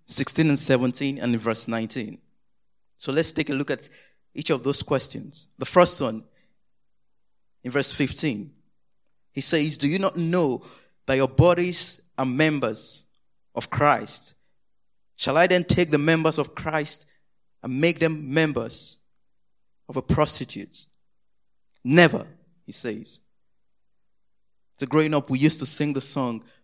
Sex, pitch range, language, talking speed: male, 135-170 Hz, English, 140 wpm